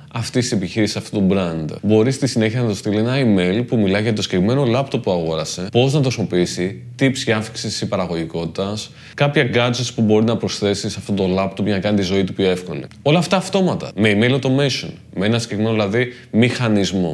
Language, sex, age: Greek, male, 20-39